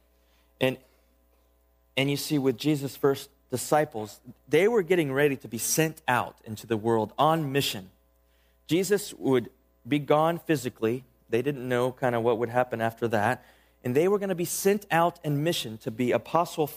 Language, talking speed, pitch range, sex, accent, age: English, 175 wpm, 105-150 Hz, male, American, 30-49